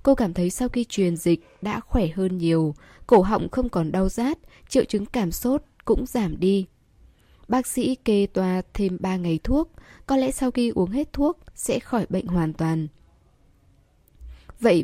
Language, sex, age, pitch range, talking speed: Vietnamese, female, 10-29, 175-235 Hz, 180 wpm